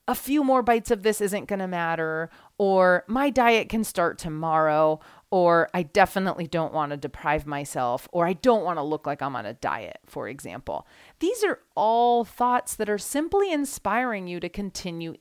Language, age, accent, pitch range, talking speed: English, 30-49, American, 170-265 Hz, 190 wpm